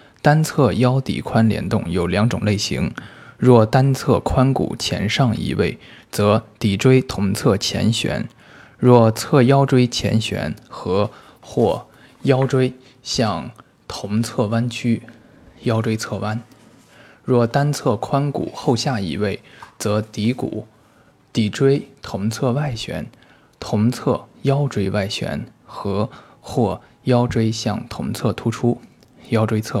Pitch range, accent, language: 105-130 Hz, native, Chinese